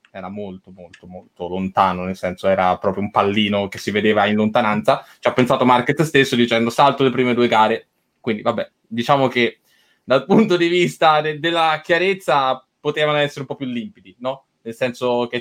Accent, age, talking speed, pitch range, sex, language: native, 10-29, 185 wpm, 120-150 Hz, male, Italian